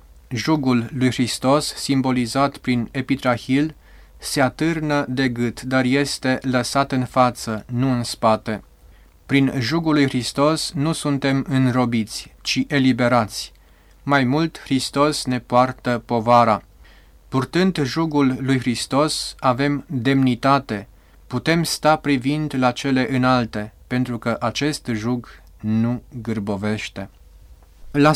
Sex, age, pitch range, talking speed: male, 30-49, 115-140 Hz, 110 wpm